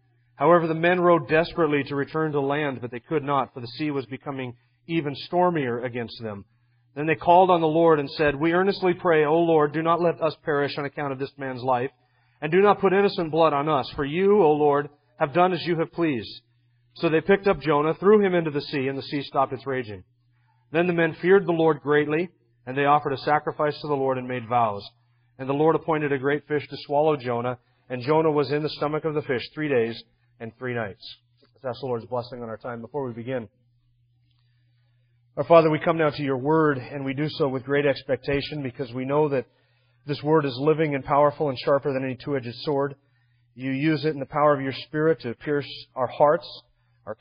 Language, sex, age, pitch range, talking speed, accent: English, male, 40-59, 120-155 Hz, 225 wpm, American